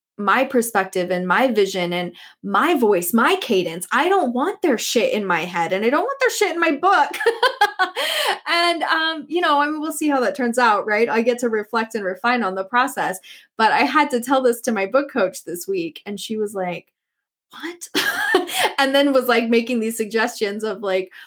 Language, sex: English, female